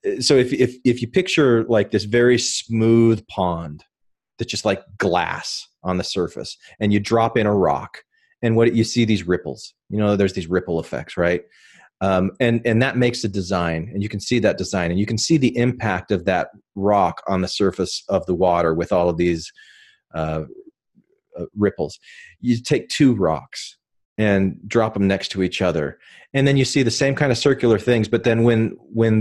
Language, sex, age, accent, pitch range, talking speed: English, male, 30-49, American, 95-125 Hz, 200 wpm